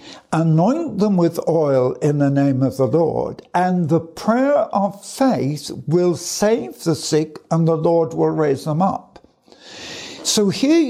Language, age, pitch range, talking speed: English, 60-79, 135-185 Hz, 155 wpm